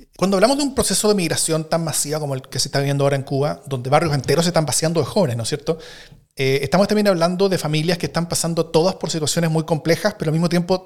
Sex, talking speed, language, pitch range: male, 260 wpm, Spanish, 135-165 Hz